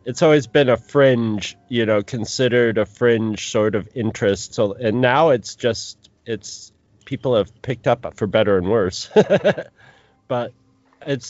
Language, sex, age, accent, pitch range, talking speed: English, male, 30-49, American, 105-125 Hz, 155 wpm